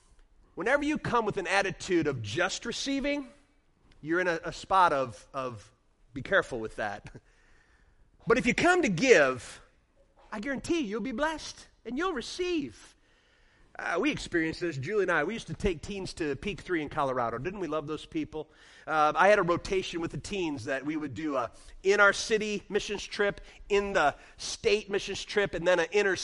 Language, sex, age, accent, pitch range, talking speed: English, male, 30-49, American, 165-220 Hz, 190 wpm